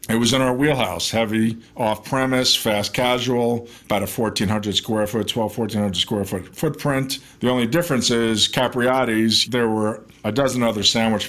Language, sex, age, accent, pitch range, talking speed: English, male, 50-69, American, 100-115 Hz, 155 wpm